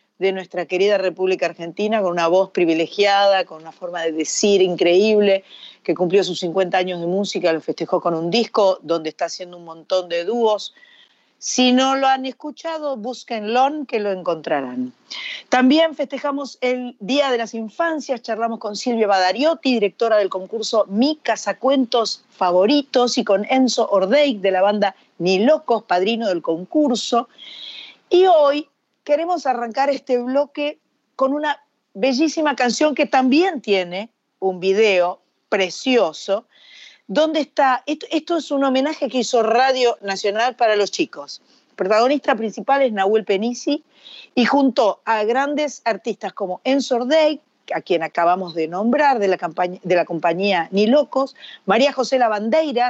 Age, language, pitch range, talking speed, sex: 40-59, Spanish, 195-275 Hz, 150 wpm, female